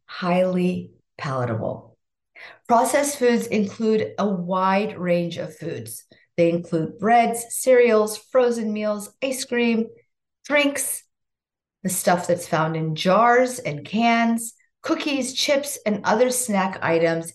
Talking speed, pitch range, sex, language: 115 wpm, 175-235 Hz, female, English